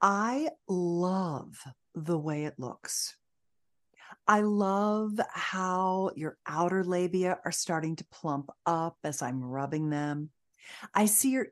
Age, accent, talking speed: 40-59, American, 125 wpm